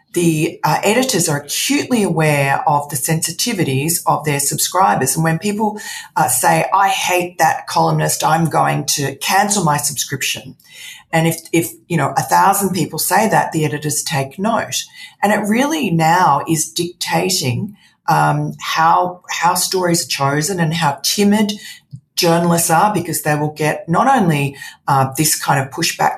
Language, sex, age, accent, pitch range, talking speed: English, female, 40-59, Australian, 140-175 Hz, 160 wpm